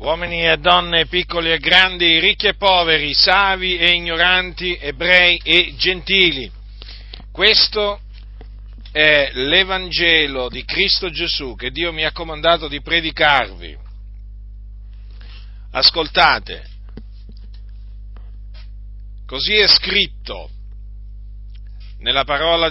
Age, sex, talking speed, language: 50-69, male, 90 wpm, Italian